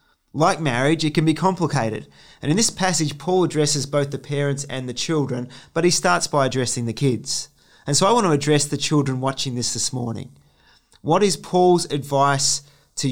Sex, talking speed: male, 190 wpm